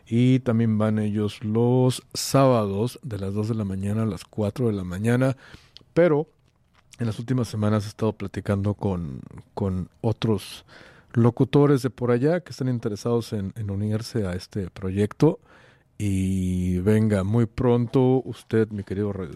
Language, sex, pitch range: English, male, 100-125 Hz